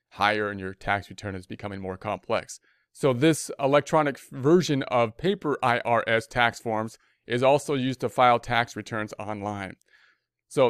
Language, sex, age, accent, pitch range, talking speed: English, male, 30-49, American, 110-140 Hz, 155 wpm